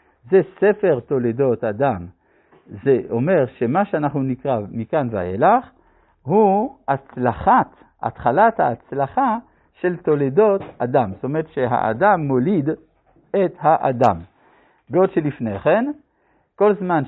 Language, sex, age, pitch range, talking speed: Hebrew, male, 50-69, 130-210 Hz, 100 wpm